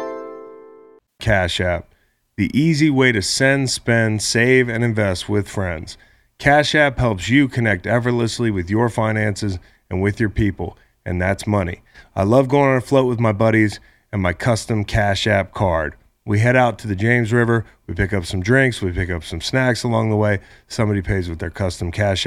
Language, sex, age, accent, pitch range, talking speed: English, male, 30-49, American, 95-120 Hz, 190 wpm